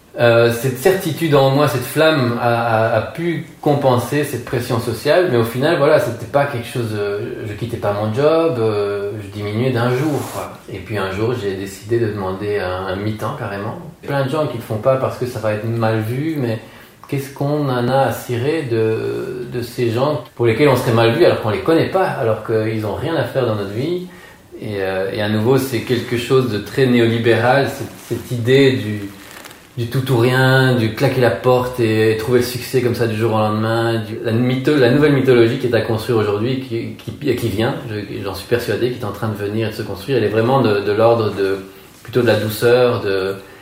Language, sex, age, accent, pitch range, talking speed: French, male, 30-49, French, 110-130 Hz, 230 wpm